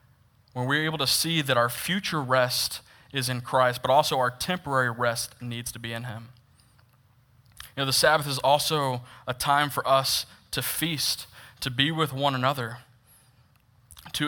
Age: 20-39